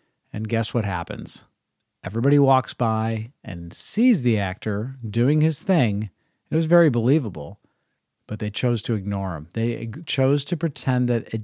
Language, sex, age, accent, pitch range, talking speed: English, male, 40-59, American, 100-130 Hz, 155 wpm